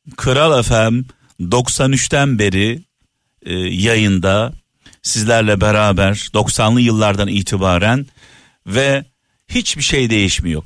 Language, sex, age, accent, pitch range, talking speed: Turkish, male, 50-69, native, 105-140 Hz, 85 wpm